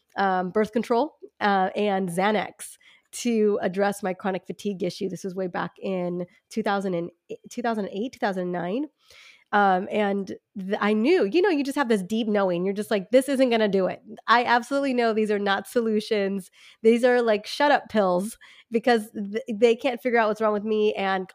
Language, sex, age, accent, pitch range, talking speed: English, female, 30-49, American, 190-230 Hz, 190 wpm